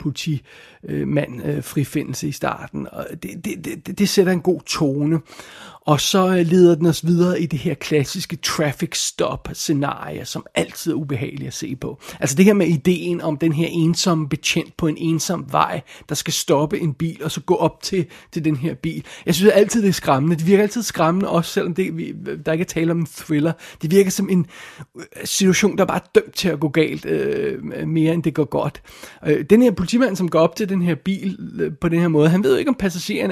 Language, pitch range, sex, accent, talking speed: Danish, 155-185 Hz, male, native, 220 wpm